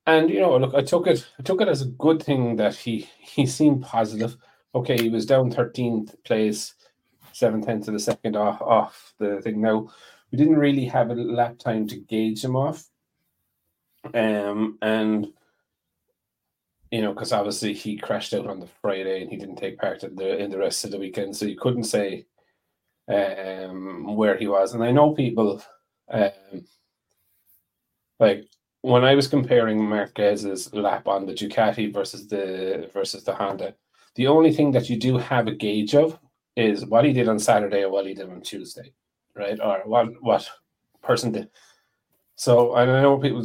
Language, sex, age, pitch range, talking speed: English, male, 30-49, 105-125 Hz, 180 wpm